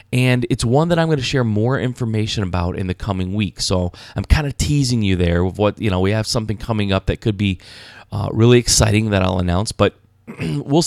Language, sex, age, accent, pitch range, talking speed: English, male, 20-39, American, 100-140 Hz, 225 wpm